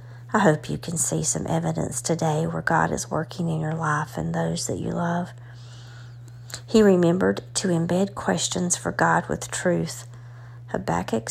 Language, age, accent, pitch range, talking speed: English, 40-59, American, 120-175 Hz, 160 wpm